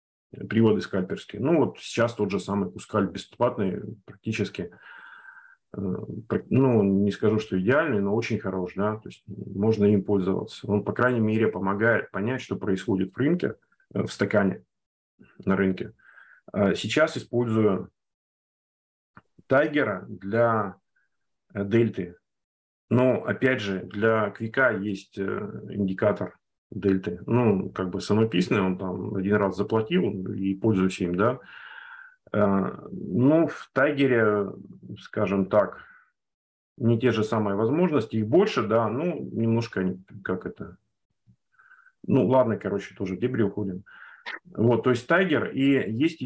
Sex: male